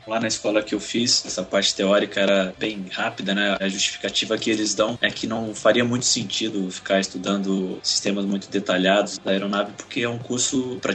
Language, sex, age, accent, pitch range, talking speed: English, male, 20-39, Brazilian, 100-125 Hz, 195 wpm